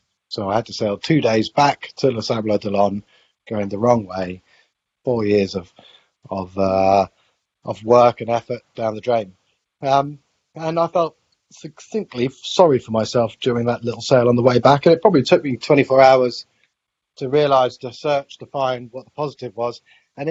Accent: British